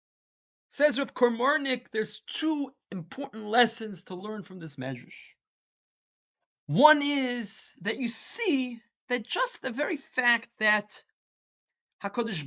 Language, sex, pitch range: English, male, 190-270 Hz